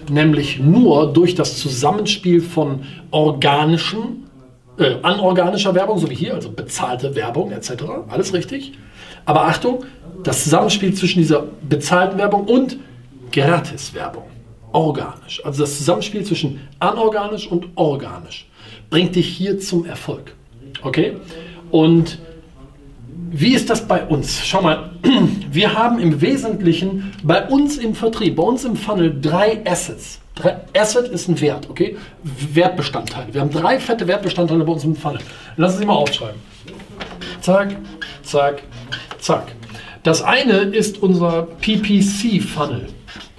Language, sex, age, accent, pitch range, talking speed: German, male, 40-59, German, 150-195 Hz, 130 wpm